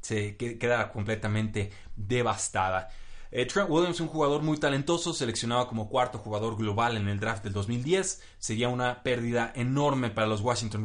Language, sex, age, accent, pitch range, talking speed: Spanish, male, 30-49, Mexican, 105-130 Hz, 150 wpm